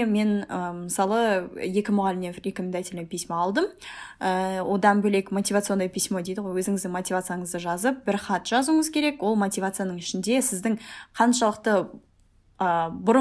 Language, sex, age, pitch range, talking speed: Russian, female, 10-29, 185-225 Hz, 100 wpm